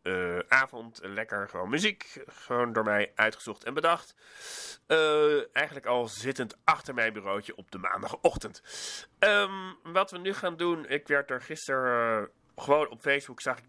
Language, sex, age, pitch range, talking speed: Dutch, male, 30-49, 105-140 Hz, 160 wpm